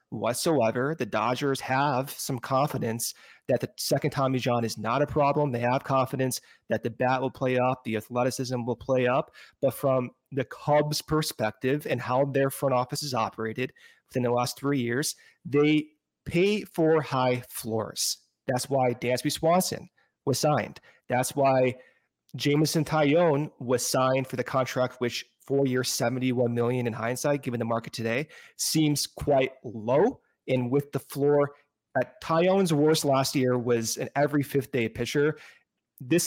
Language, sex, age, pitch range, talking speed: English, male, 30-49, 125-145 Hz, 155 wpm